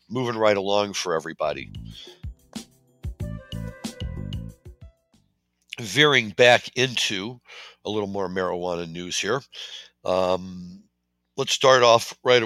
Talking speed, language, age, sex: 90 wpm, English, 60-79, male